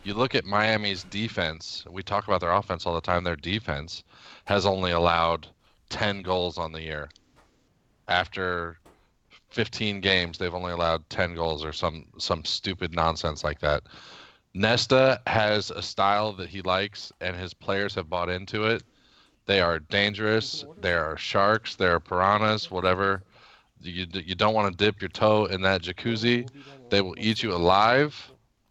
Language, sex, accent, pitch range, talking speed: English, male, American, 90-105 Hz, 165 wpm